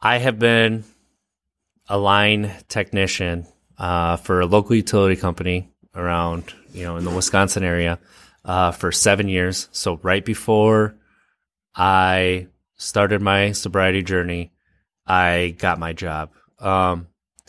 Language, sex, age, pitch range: English, male, 20-39, 90-110 Hz